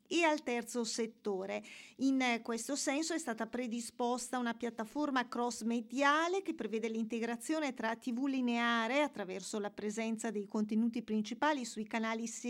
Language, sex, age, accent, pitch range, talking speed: Italian, female, 40-59, native, 225-280 Hz, 130 wpm